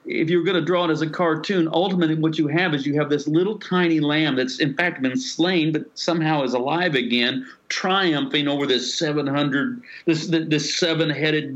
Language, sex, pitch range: English, male, 130-165 Hz